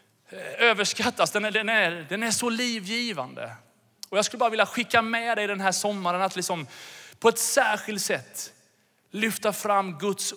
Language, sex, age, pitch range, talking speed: Swedish, male, 30-49, 130-185 Hz, 175 wpm